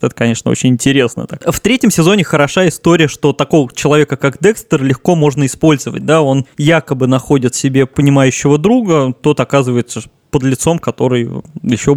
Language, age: Russian, 20-39